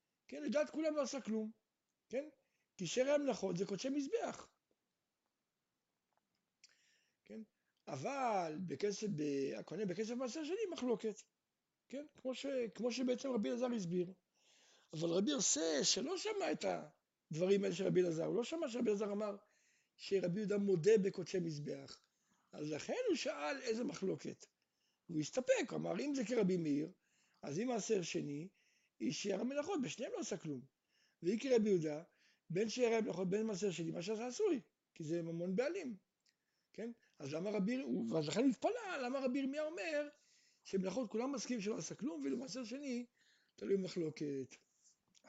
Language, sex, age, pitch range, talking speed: Hebrew, male, 60-79, 185-255 Hz, 125 wpm